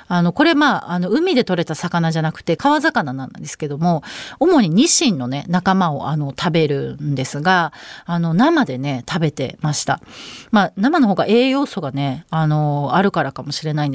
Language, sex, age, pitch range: Japanese, female, 30-49, 155-265 Hz